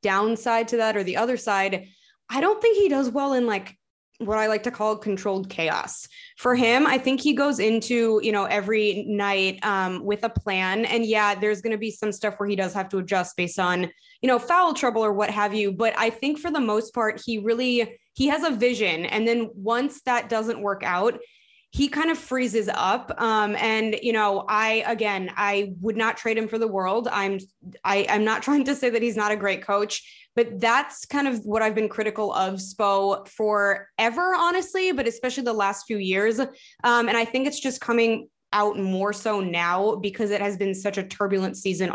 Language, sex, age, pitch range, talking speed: English, female, 20-39, 200-235 Hz, 215 wpm